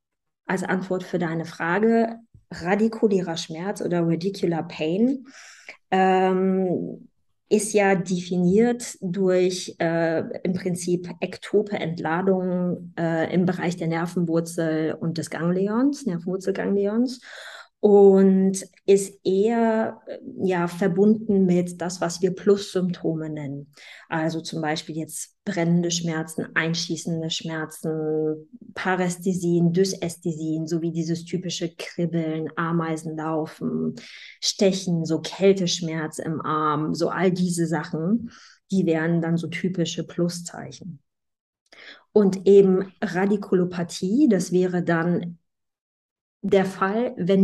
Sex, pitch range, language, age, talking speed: female, 165-190 Hz, German, 20-39, 100 wpm